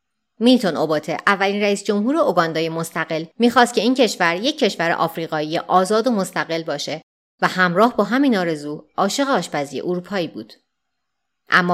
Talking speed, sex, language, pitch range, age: 145 wpm, female, Persian, 165-225 Hz, 30-49